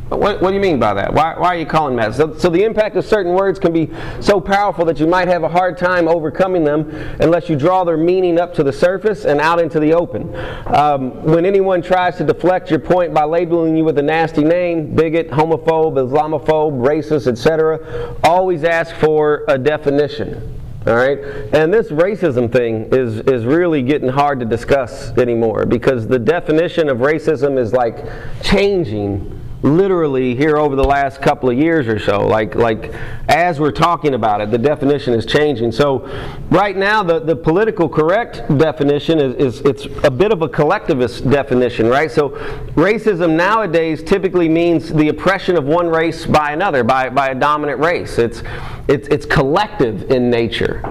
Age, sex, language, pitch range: 40-59, male, English, 140-175 Hz